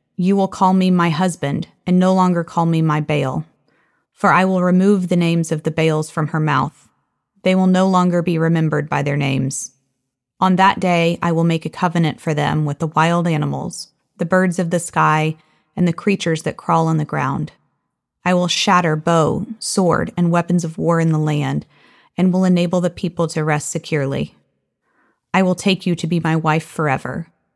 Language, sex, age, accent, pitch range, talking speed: English, female, 30-49, American, 155-180 Hz, 195 wpm